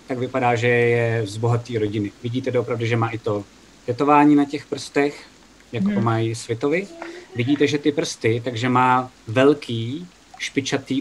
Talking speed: 160 wpm